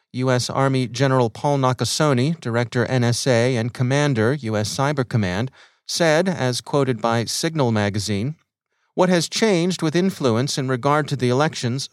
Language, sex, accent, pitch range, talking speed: English, male, American, 120-145 Hz, 140 wpm